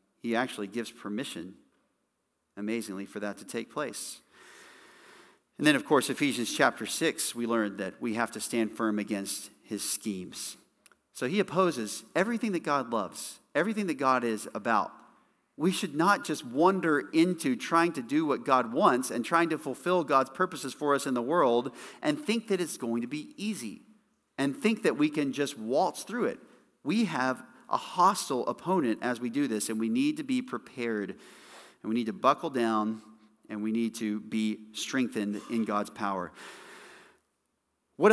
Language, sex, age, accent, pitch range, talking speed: English, male, 40-59, American, 115-175 Hz, 175 wpm